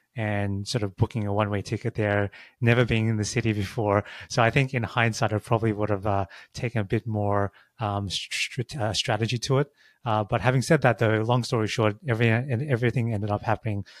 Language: English